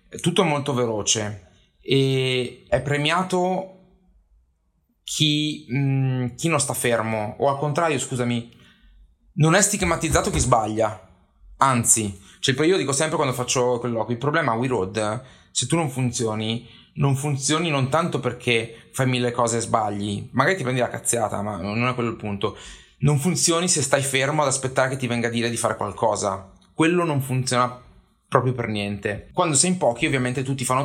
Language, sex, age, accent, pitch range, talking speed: Italian, male, 20-39, native, 115-140 Hz, 170 wpm